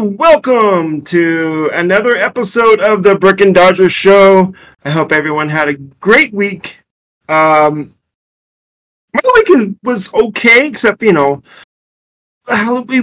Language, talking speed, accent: English, 120 wpm, American